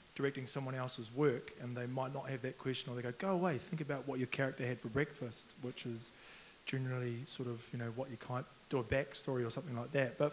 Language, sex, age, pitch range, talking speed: English, male, 20-39, 125-135 Hz, 245 wpm